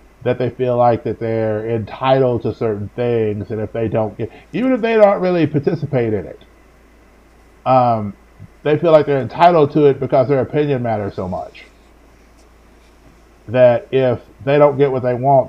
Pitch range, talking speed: 100-130 Hz, 175 wpm